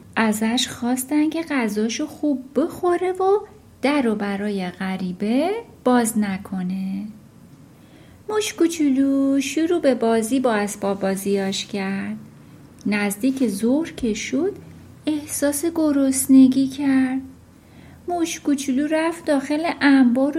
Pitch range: 230-315 Hz